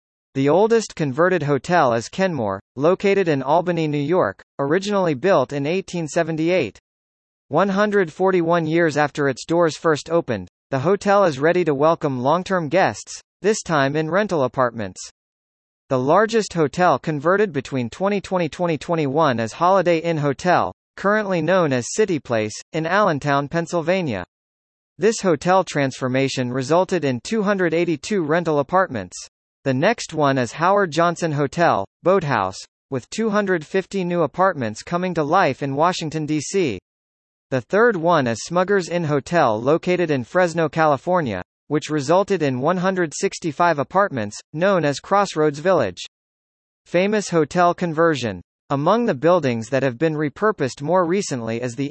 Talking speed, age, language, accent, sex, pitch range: 130 wpm, 40-59, English, American, male, 135-185 Hz